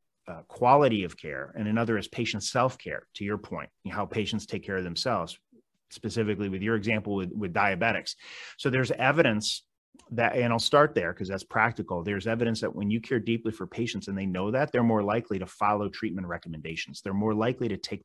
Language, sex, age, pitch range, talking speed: English, male, 30-49, 95-115 Hz, 205 wpm